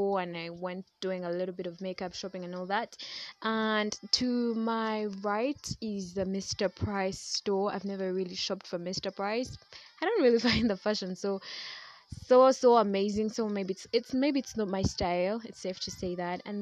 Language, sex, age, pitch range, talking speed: English, female, 20-39, 190-225 Hz, 195 wpm